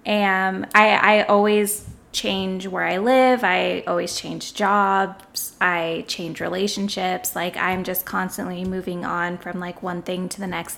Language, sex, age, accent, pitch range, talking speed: English, female, 10-29, American, 180-200 Hz, 155 wpm